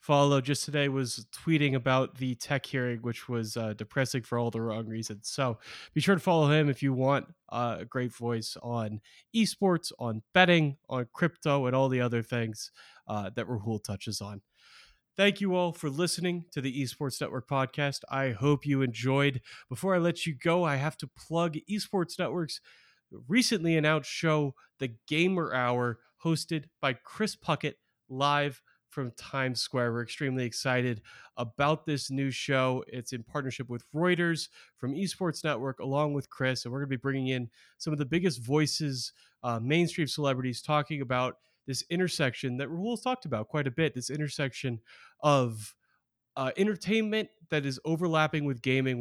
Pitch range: 125-155 Hz